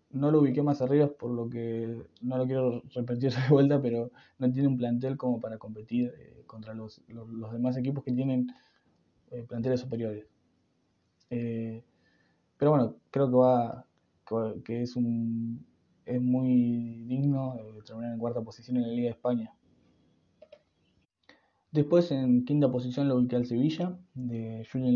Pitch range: 115-130 Hz